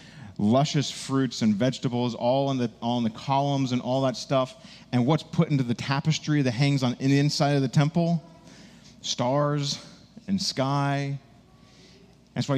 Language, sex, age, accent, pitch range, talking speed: English, male, 30-49, American, 120-155 Hz, 165 wpm